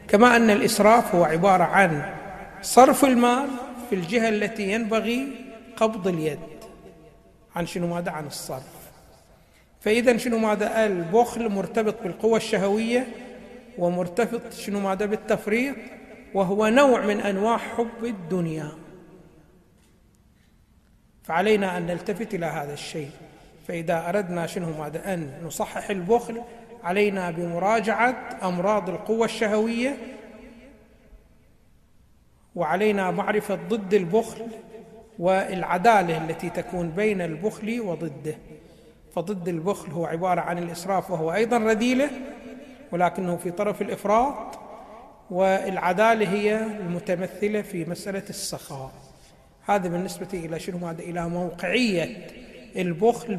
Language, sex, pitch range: Arabic, male, 175-225 Hz